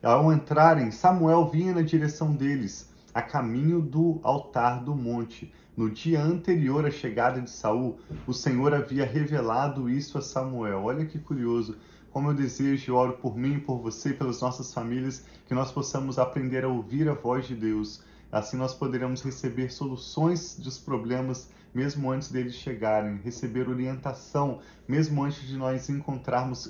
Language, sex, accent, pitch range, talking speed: Portuguese, male, Brazilian, 120-145 Hz, 155 wpm